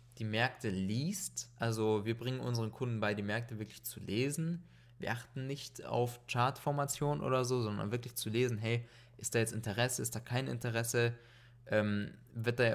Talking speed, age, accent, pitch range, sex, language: 165 wpm, 20-39, German, 115-135 Hz, male, German